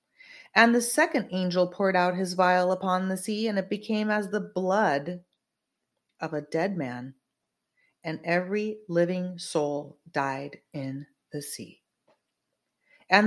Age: 30-49